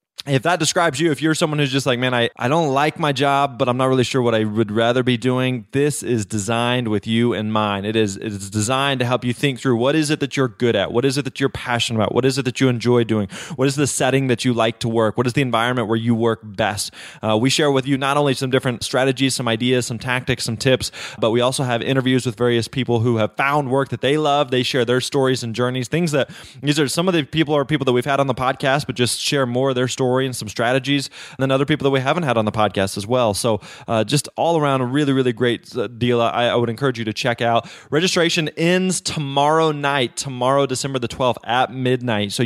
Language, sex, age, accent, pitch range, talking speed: English, male, 20-39, American, 115-140 Hz, 265 wpm